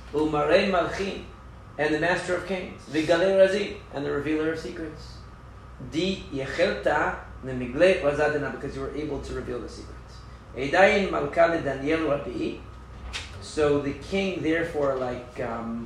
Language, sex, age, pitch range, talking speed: English, male, 40-59, 130-165 Hz, 90 wpm